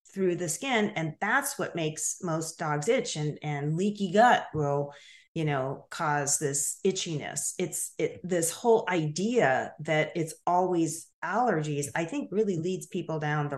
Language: English